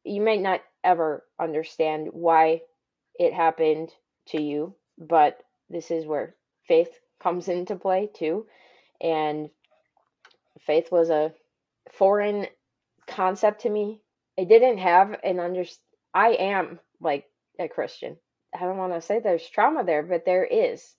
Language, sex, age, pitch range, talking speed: English, female, 20-39, 175-225 Hz, 135 wpm